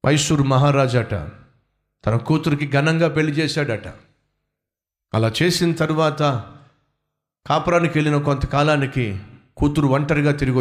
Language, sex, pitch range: Telugu, male, 110-150 Hz